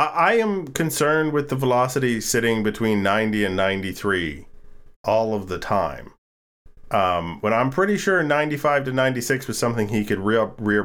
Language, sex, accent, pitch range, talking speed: English, male, American, 105-145 Hz, 160 wpm